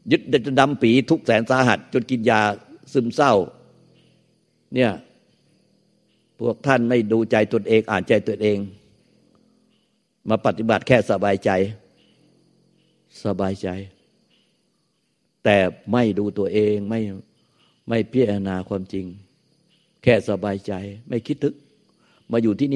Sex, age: male, 60-79